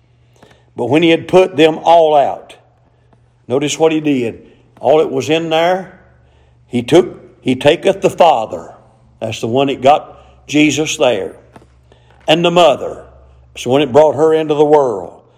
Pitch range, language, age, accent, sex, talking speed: 120-180 Hz, English, 50-69, American, male, 160 wpm